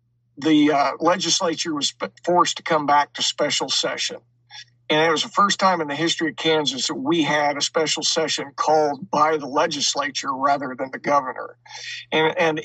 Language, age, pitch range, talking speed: English, 50-69, 145-175 Hz, 180 wpm